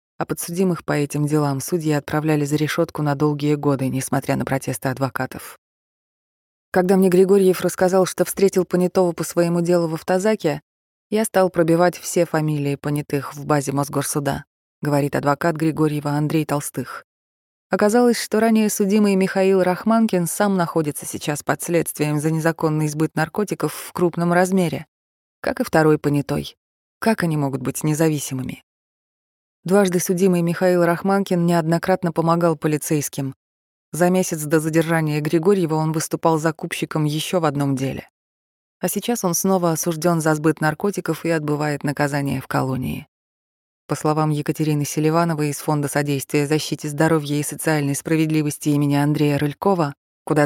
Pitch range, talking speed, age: 145-175 Hz, 140 wpm, 20-39